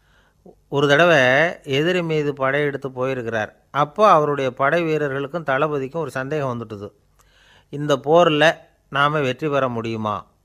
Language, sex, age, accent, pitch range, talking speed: Tamil, male, 30-49, native, 115-145 Hz, 115 wpm